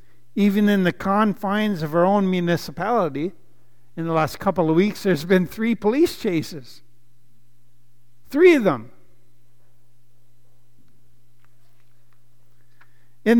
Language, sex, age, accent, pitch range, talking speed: English, male, 60-79, American, 120-180 Hz, 105 wpm